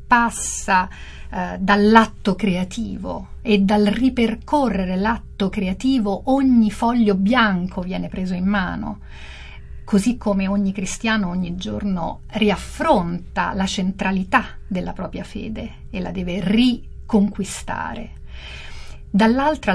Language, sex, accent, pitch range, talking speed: Italian, female, native, 185-230 Hz, 95 wpm